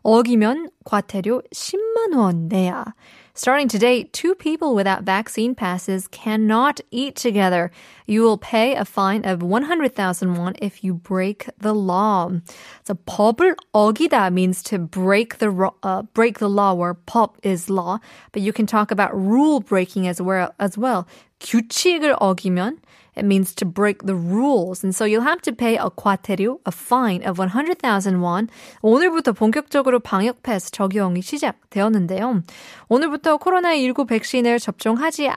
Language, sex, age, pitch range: Korean, female, 20-39, 195-260 Hz